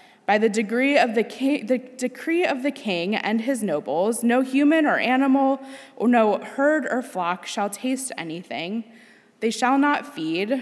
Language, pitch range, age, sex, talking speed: English, 210-260 Hz, 20-39, female, 145 wpm